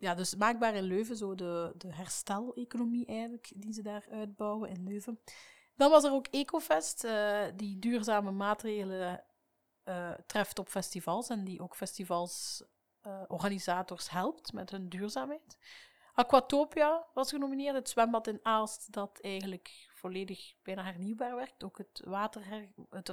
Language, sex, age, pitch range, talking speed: Dutch, female, 30-49, 190-235 Hz, 145 wpm